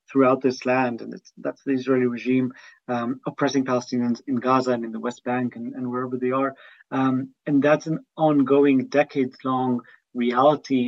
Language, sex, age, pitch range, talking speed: English, male, 30-49, 130-145 Hz, 175 wpm